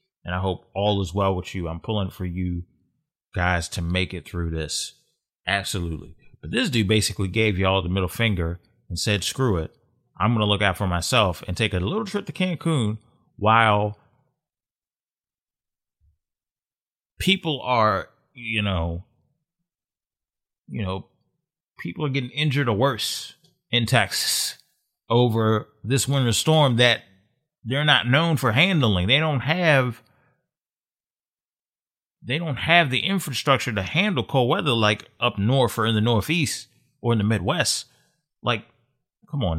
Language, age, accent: English, 30-49, American